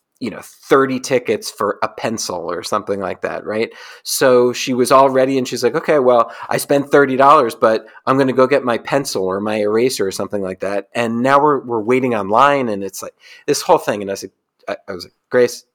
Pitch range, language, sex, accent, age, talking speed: 100-135 Hz, English, male, American, 40-59, 225 wpm